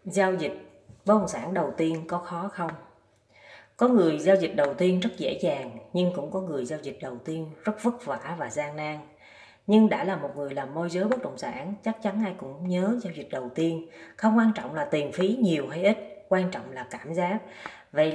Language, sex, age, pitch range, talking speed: Vietnamese, female, 20-39, 170-230 Hz, 225 wpm